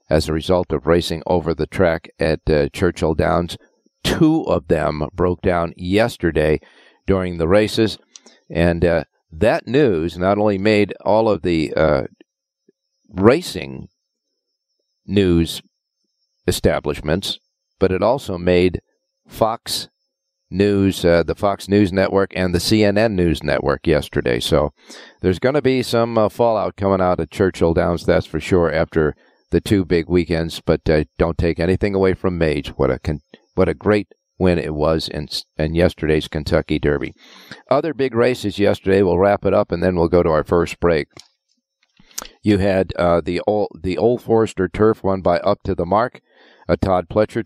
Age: 50-69